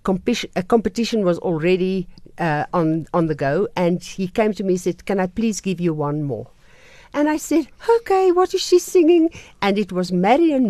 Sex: female